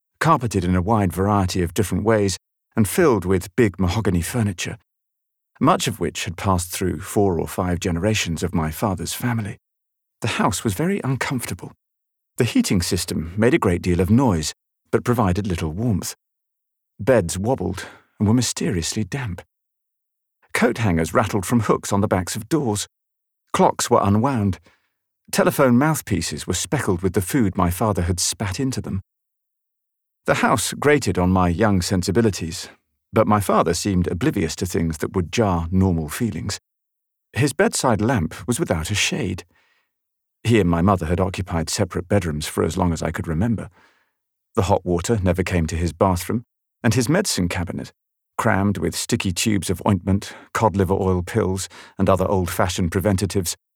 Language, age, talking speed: English, 40-59, 160 wpm